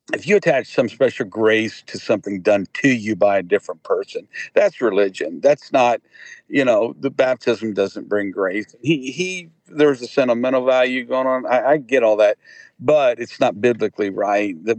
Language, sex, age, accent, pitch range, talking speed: English, male, 50-69, American, 105-150 Hz, 185 wpm